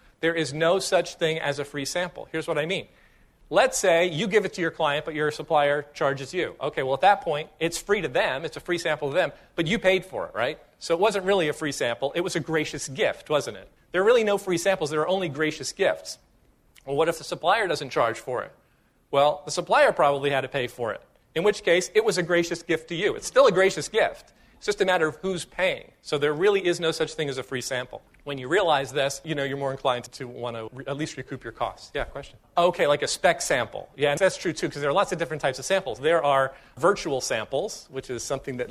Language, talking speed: English, 260 wpm